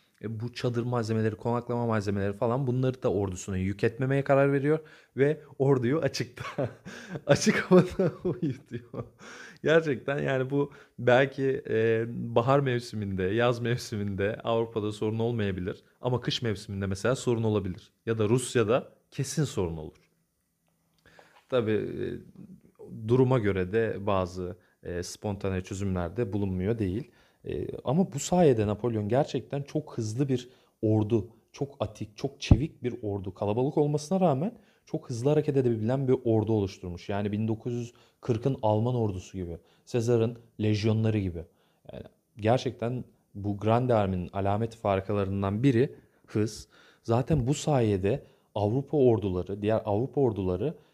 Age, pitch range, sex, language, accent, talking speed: 30-49, 105-135 Hz, male, Turkish, native, 125 wpm